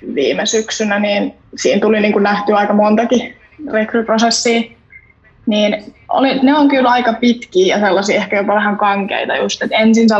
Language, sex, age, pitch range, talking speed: Finnish, female, 20-39, 200-225 Hz, 165 wpm